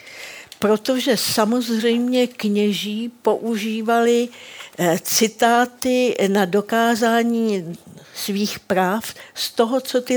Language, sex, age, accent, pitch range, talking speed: Czech, female, 50-69, native, 190-230 Hz, 75 wpm